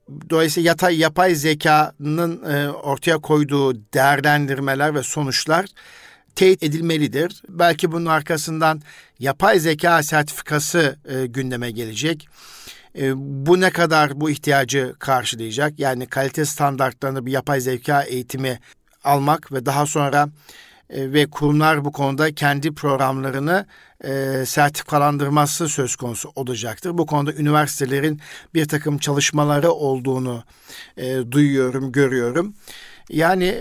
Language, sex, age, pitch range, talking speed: Turkish, male, 50-69, 135-160 Hz, 105 wpm